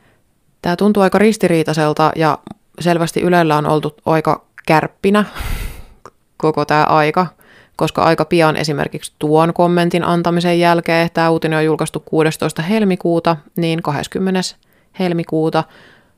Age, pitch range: 20-39, 155-185 Hz